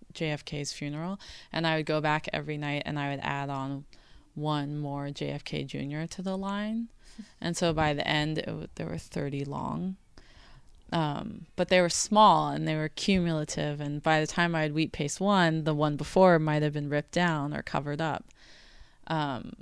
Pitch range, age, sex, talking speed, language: 150-175 Hz, 20-39, female, 185 wpm, English